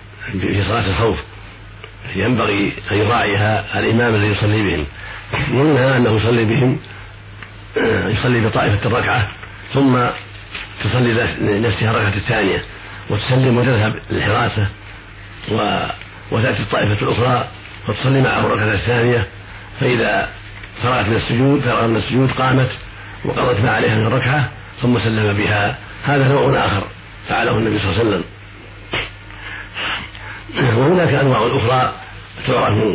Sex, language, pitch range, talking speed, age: male, Arabic, 100-120 Hz, 105 wpm, 50-69